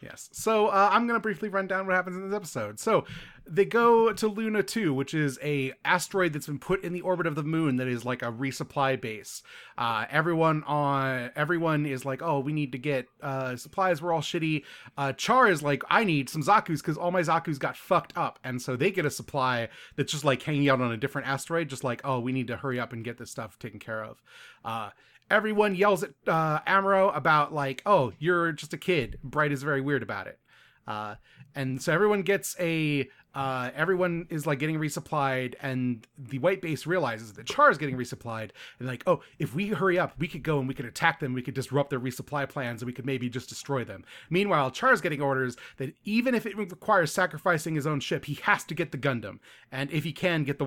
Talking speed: 230 wpm